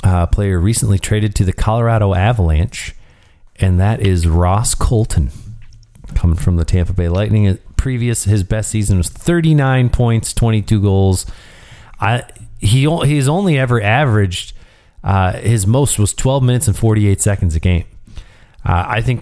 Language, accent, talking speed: English, American, 155 wpm